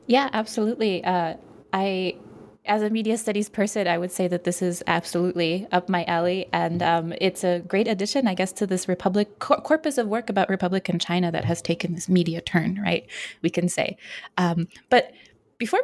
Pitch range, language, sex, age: 170-210 Hz, English, female, 20-39